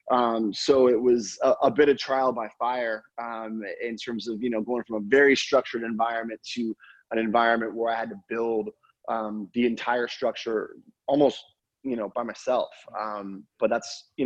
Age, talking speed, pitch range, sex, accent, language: 20-39, 185 wpm, 110-125 Hz, male, American, English